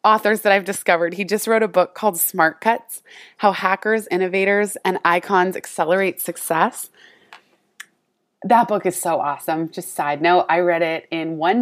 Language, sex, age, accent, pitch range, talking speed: English, female, 20-39, American, 170-220 Hz, 165 wpm